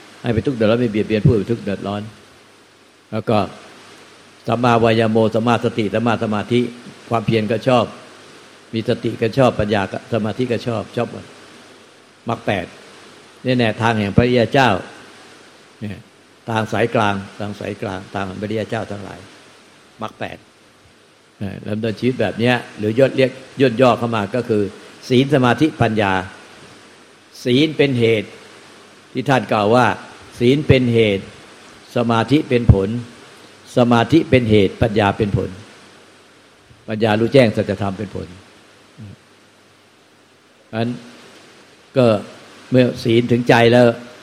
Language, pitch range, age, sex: Thai, 105-120 Hz, 60-79, male